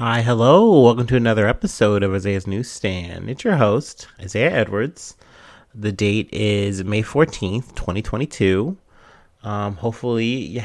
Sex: male